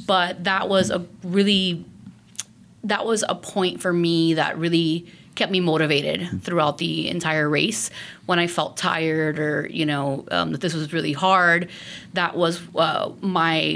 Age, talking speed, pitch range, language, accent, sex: 30-49, 160 wpm, 165-195 Hz, English, American, female